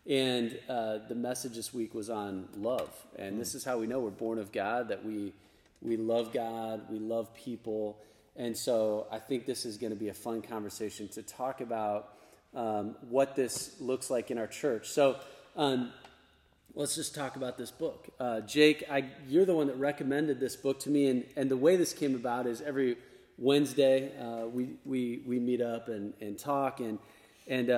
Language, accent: English, American